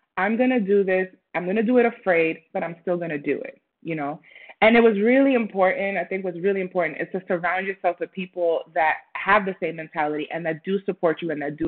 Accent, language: American, English